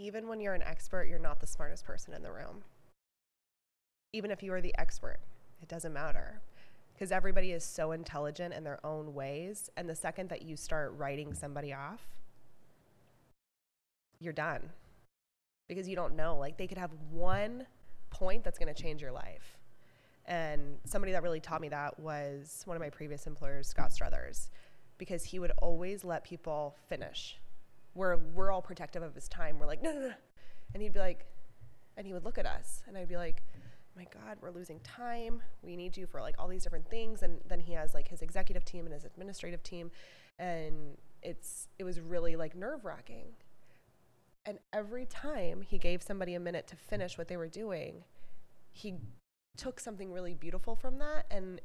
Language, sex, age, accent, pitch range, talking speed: English, female, 20-39, American, 150-185 Hz, 190 wpm